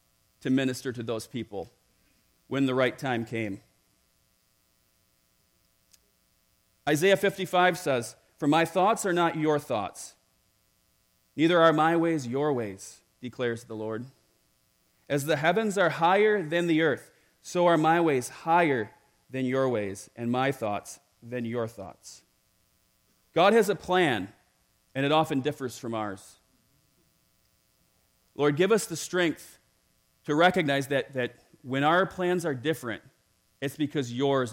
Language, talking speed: English, 135 wpm